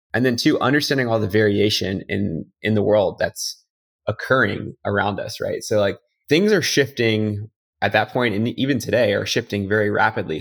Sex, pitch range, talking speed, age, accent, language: male, 105-120 Hz, 180 wpm, 20-39, American, English